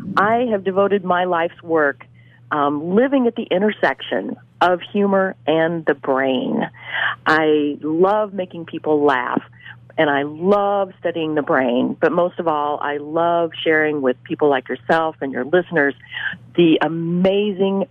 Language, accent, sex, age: English, American, female, 40-59